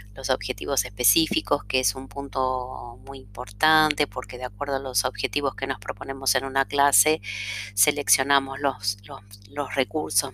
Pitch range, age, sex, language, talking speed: 120-145 Hz, 30-49, female, Spanish, 150 wpm